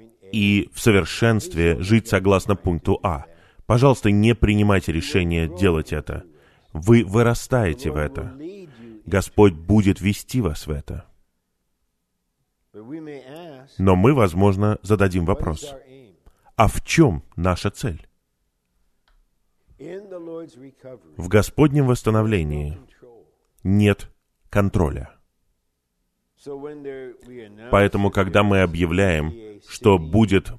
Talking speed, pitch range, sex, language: 85 wpm, 85-115 Hz, male, Russian